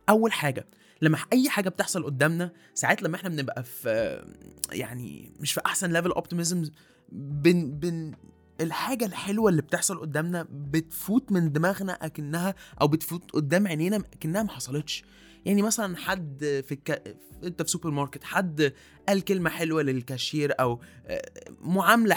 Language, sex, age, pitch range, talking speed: Arabic, male, 20-39, 135-175 Hz, 140 wpm